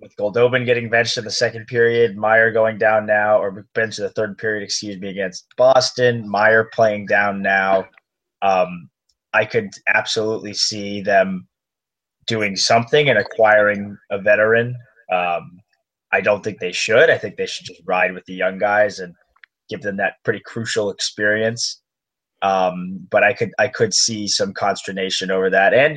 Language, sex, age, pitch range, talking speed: English, male, 20-39, 100-125 Hz, 170 wpm